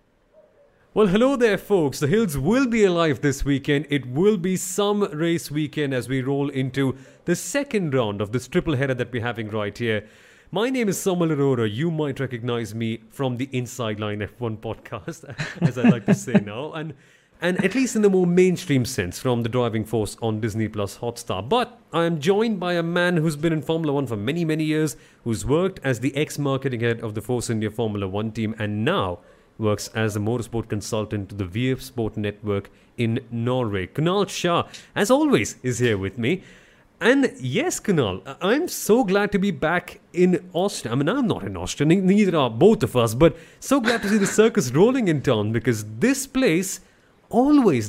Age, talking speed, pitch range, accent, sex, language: 30-49, 200 wpm, 115-185 Hz, Indian, male, English